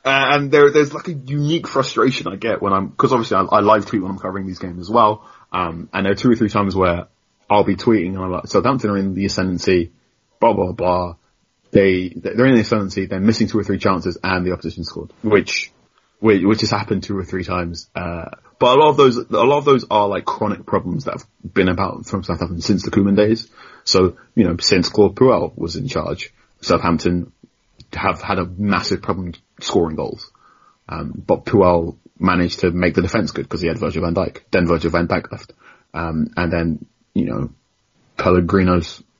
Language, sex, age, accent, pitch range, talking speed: English, male, 30-49, British, 90-105 Hz, 215 wpm